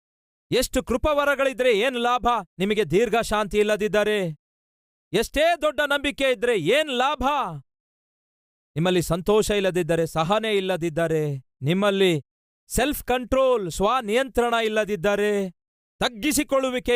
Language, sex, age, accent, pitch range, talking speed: Kannada, male, 40-59, native, 150-210 Hz, 85 wpm